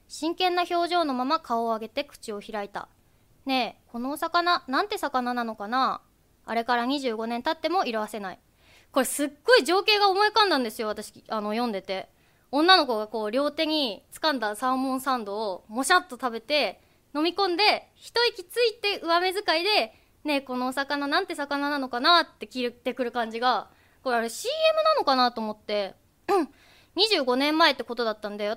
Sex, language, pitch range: female, Japanese, 230-340 Hz